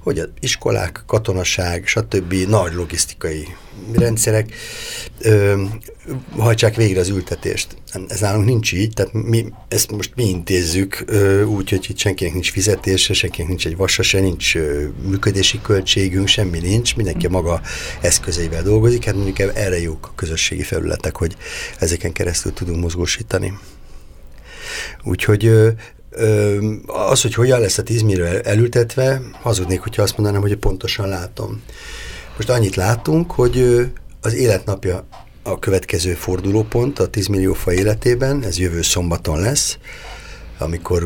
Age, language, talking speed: 60-79, Hungarian, 135 wpm